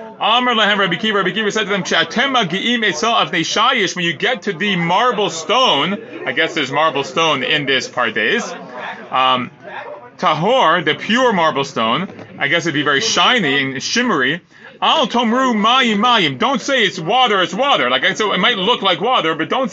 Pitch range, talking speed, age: 165-225 Hz, 135 wpm, 30-49